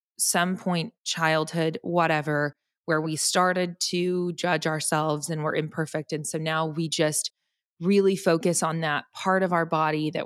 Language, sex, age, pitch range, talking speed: English, female, 20-39, 160-185 Hz, 160 wpm